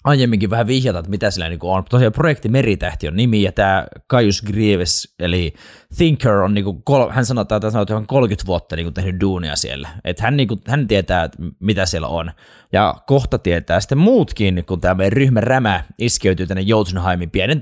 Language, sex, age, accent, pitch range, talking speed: Finnish, male, 20-39, native, 90-115 Hz, 175 wpm